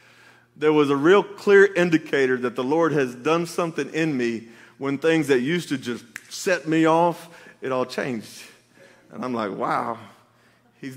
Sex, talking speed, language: male, 170 wpm, English